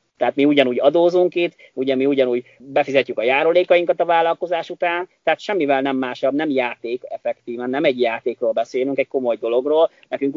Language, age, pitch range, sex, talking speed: Hungarian, 30-49, 125-160 Hz, male, 170 wpm